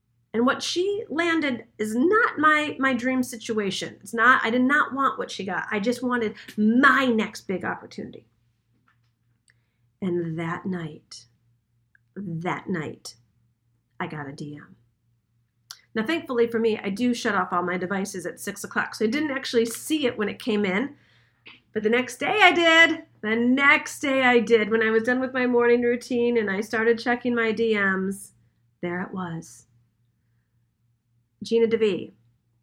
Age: 40-59